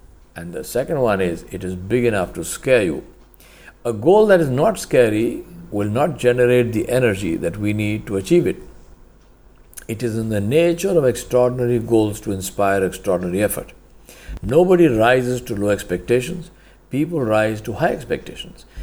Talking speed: 165 wpm